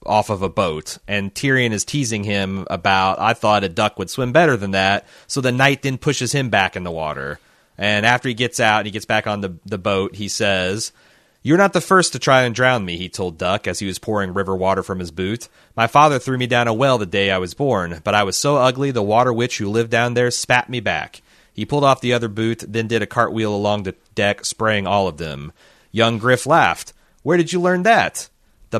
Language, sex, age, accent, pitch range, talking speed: English, male, 30-49, American, 100-130 Hz, 245 wpm